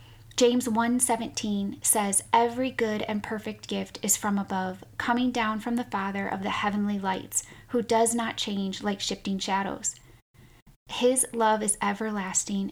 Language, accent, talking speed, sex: English, American, 145 wpm, female